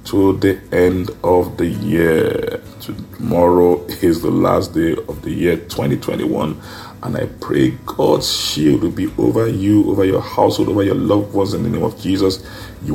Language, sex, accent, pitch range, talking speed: English, male, Nigerian, 85-110 Hz, 170 wpm